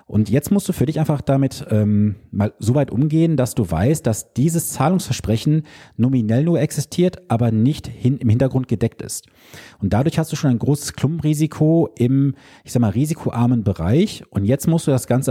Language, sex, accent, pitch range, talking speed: German, male, German, 105-140 Hz, 190 wpm